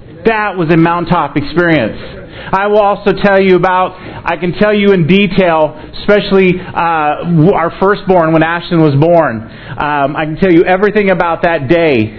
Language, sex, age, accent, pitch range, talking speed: English, male, 40-59, American, 165-200 Hz, 165 wpm